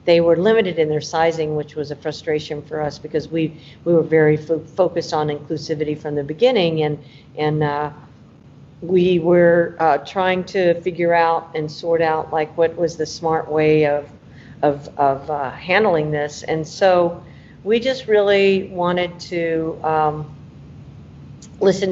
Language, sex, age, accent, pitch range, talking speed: English, female, 50-69, American, 150-170 Hz, 160 wpm